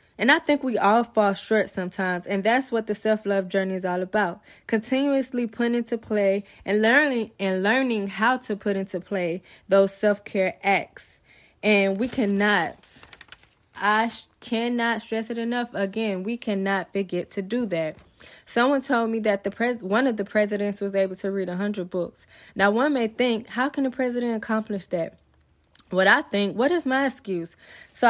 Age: 20-39